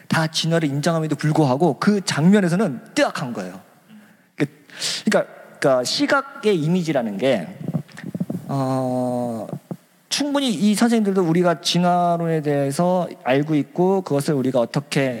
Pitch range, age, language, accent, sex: 140-190 Hz, 40-59, Korean, native, male